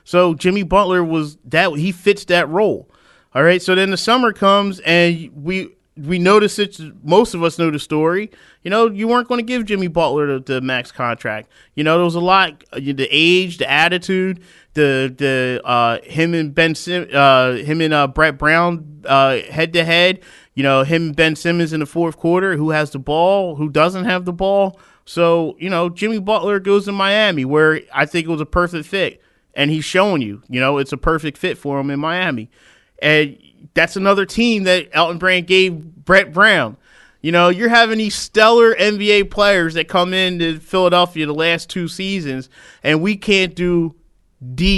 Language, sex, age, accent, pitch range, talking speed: English, male, 30-49, American, 150-190 Hz, 195 wpm